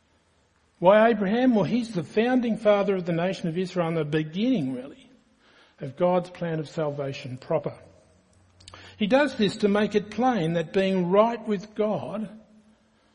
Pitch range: 160-225 Hz